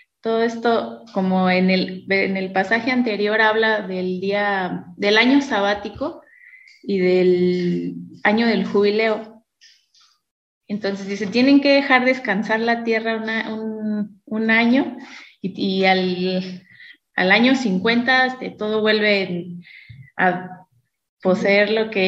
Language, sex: Spanish, female